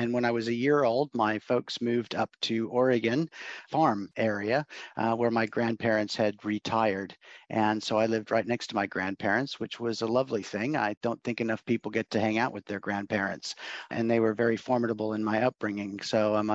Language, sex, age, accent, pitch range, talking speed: English, male, 50-69, American, 105-120 Hz, 205 wpm